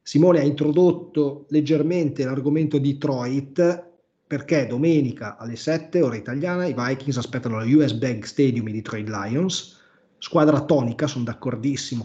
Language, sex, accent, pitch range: Italian, male, native, 115-150 Hz